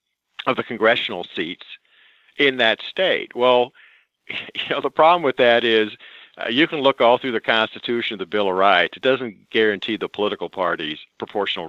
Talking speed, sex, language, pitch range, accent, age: 175 wpm, male, English, 105-135 Hz, American, 50-69